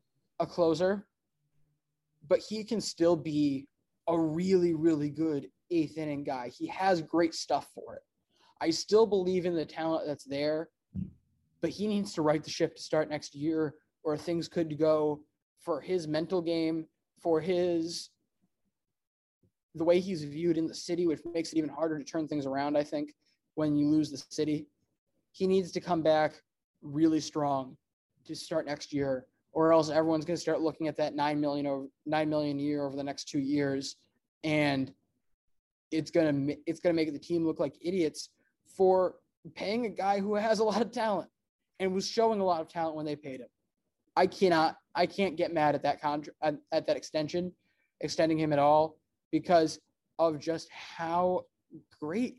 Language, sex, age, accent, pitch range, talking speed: English, male, 20-39, American, 150-175 Hz, 180 wpm